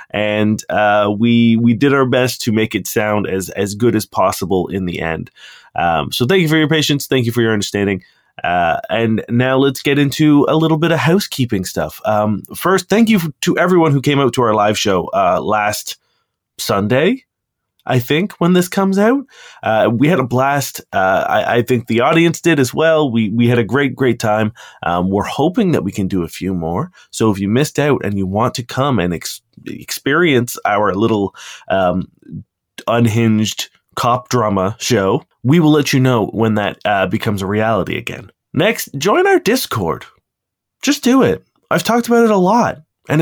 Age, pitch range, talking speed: 20-39, 110-160 Hz, 200 wpm